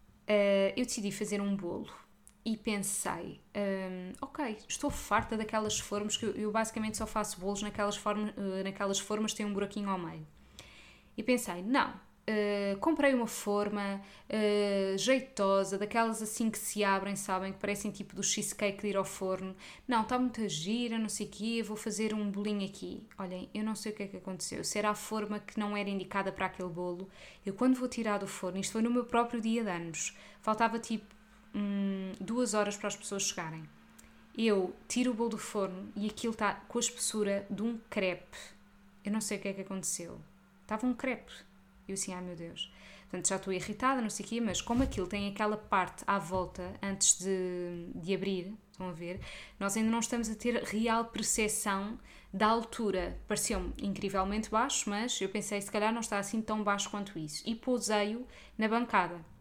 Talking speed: 195 wpm